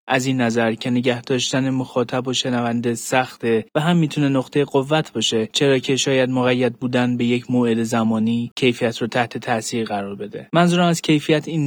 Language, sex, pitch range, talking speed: Persian, male, 115-130 Hz, 180 wpm